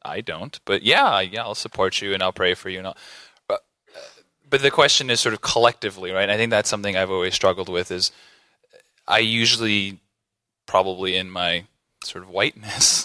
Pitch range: 95-115 Hz